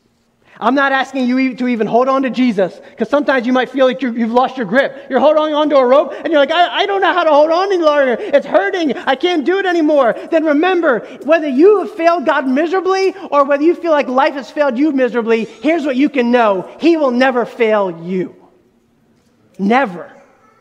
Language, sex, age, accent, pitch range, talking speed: English, male, 30-49, American, 215-315 Hz, 220 wpm